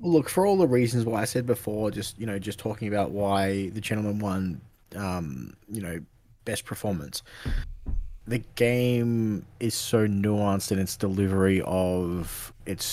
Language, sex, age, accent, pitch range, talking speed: English, male, 20-39, Australian, 90-110 Hz, 160 wpm